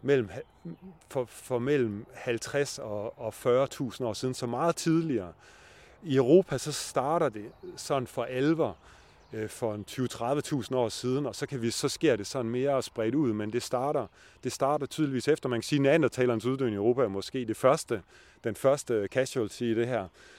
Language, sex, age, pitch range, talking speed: Danish, male, 30-49, 115-145 Hz, 190 wpm